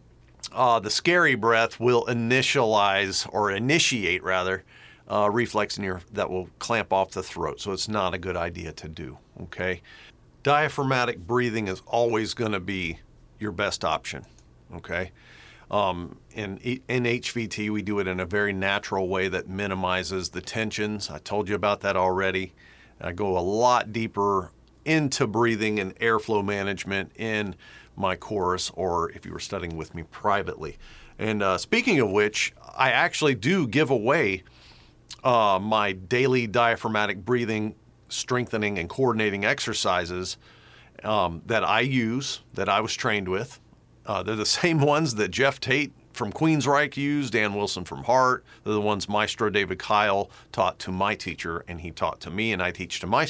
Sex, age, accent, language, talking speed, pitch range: male, 40-59, American, English, 165 wpm, 95-120 Hz